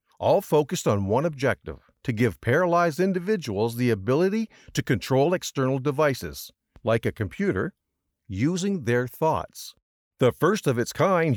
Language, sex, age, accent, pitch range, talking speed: English, male, 50-69, American, 110-165 Hz, 120 wpm